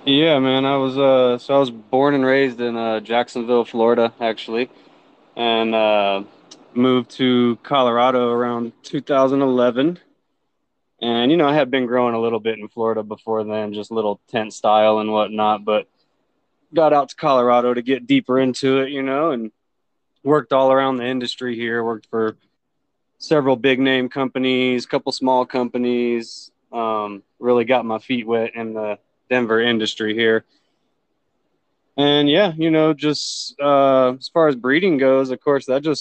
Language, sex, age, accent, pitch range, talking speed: English, male, 20-39, American, 115-135 Hz, 165 wpm